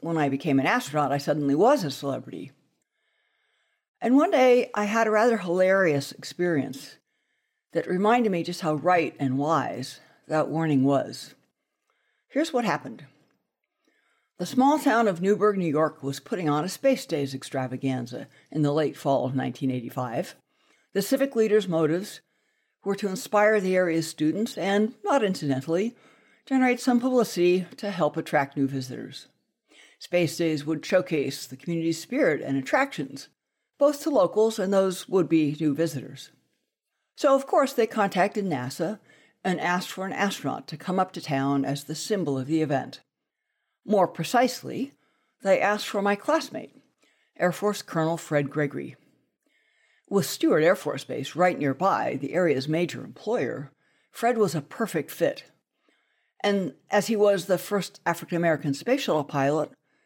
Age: 60-79